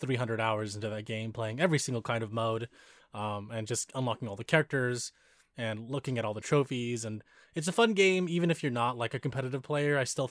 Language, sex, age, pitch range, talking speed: English, male, 20-39, 120-150 Hz, 225 wpm